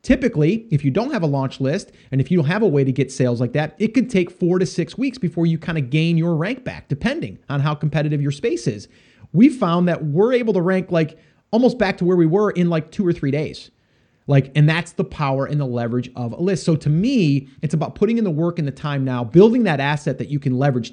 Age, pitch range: 30-49, 135-170 Hz